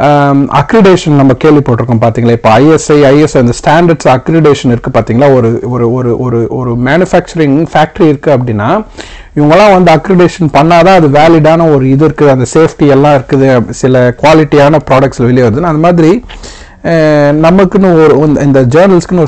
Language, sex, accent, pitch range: Tamil, male, native, 130-160 Hz